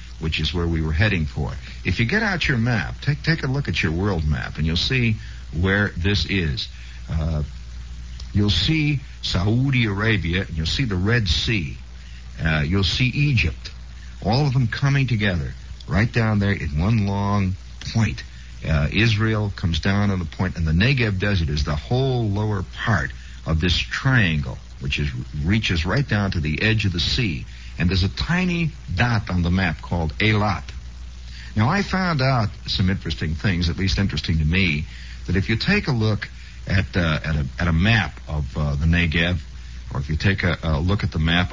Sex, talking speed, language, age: male, 190 wpm, English, 60-79